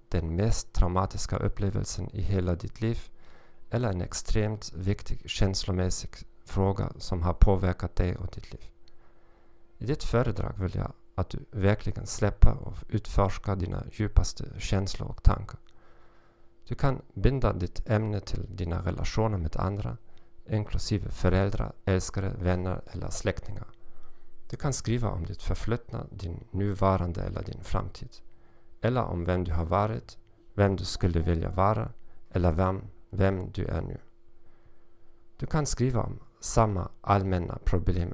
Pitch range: 90-110 Hz